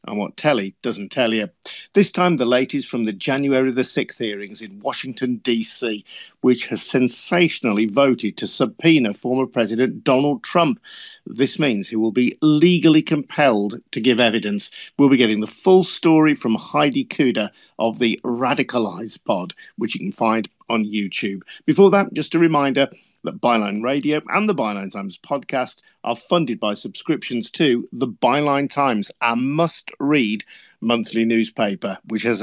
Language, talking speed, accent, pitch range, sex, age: English, 155 wpm, British, 110-155 Hz, male, 50-69